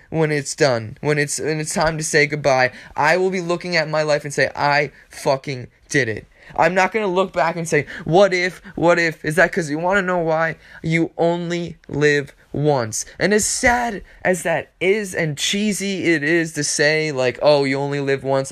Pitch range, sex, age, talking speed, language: 145-210 Hz, male, 20-39, 215 wpm, English